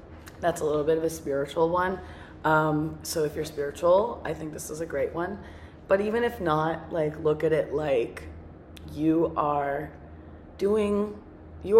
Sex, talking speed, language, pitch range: female, 170 wpm, English, 115-160 Hz